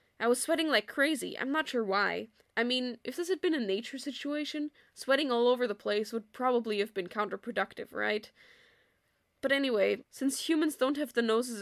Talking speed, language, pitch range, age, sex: 190 wpm, English, 210-275 Hz, 10-29, female